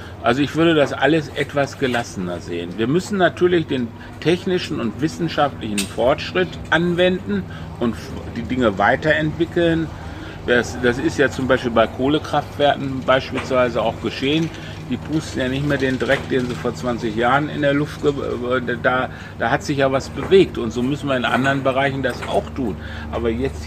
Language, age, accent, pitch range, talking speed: German, 60-79, German, 105-135 Hz, 165 wpm